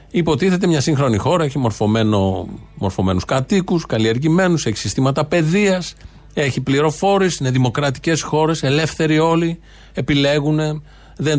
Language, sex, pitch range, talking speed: Greek, male, 115-155 Hz, 110 wpm